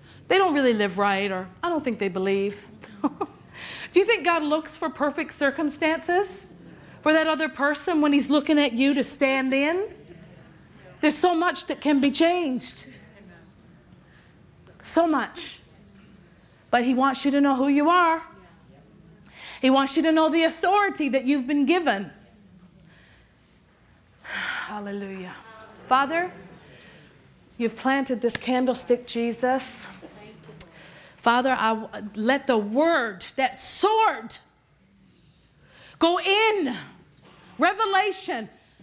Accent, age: American, 40-59